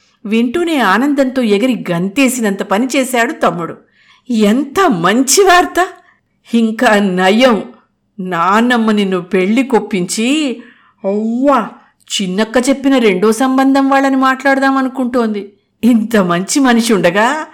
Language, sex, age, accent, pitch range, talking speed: Telugu, female, 50-69, native, 185-255 Hz, 90 wpm